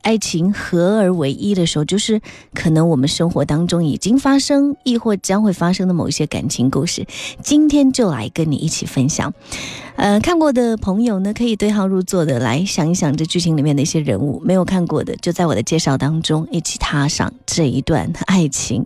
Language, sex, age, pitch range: Chinese, female, 30-49, 145-205 Hz